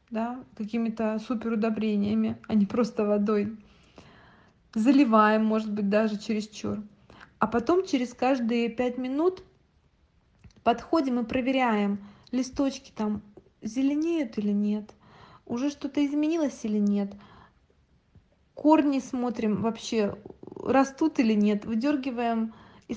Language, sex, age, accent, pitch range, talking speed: Russian, female, 20-39, native, 215-265 Hz, 105 wpm